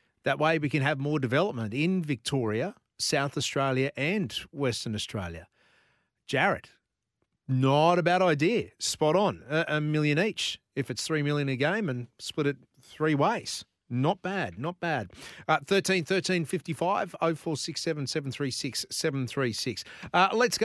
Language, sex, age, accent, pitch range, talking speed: English, male, 40-59, Australian, 130-165 Hz, 130 wpm